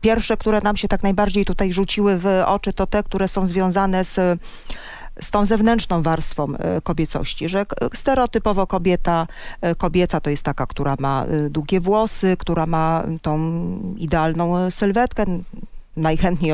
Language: Polish